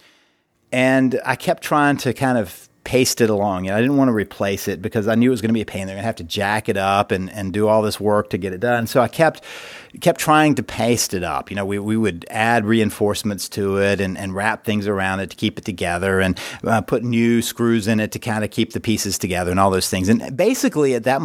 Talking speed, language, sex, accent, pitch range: 270 wpm, English, male, American, 105-135 Hz